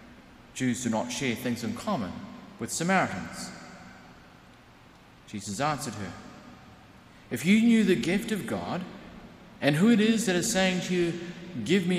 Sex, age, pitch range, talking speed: male, 50-69, 125-205 Hz, 145 wpm